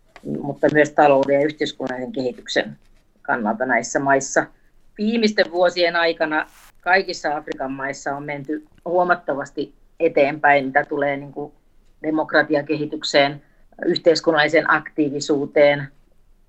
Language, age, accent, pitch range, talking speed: Finnish, 30-49, native, 140-165 Hz, 95 wpm